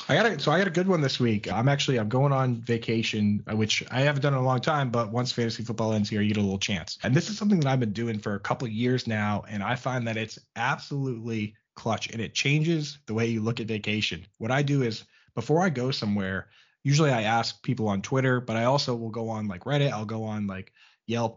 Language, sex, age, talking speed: English, male, 20-39, 260 wpm